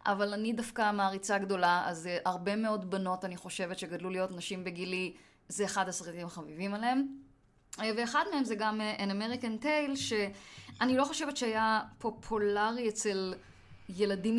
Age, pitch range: 20-39, 185-230 Hz